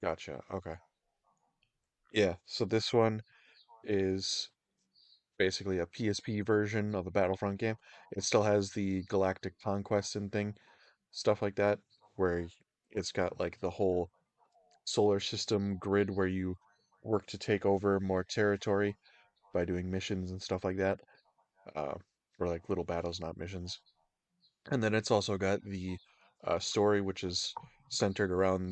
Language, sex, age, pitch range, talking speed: English, male, 20-39, 90-105 Hz, 145 wpm